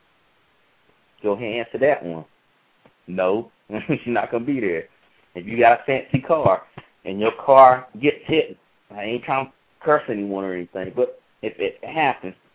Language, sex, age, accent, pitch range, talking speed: English, male, 30-49, American, 115-140 Hz, 170 wpm